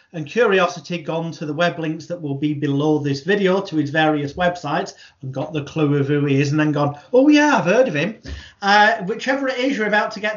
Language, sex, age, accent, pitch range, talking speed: English, male, 40-59, British, 155-185 Hz, 245 wpm